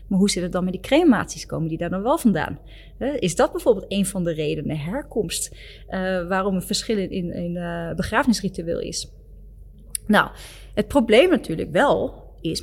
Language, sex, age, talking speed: Dutch, female, 30-49, 180 wpm